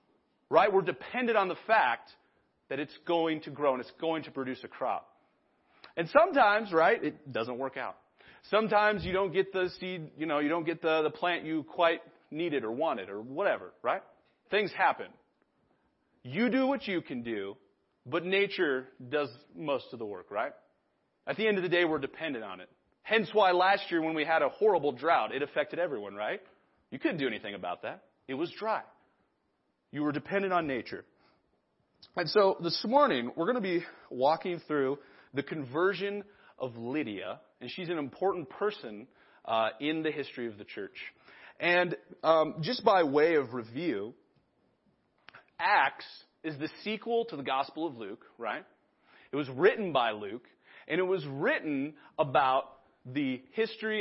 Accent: American